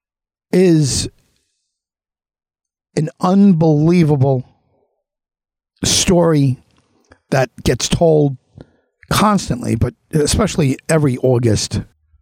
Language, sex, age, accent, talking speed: English, male, 50-69, American, 60 wpm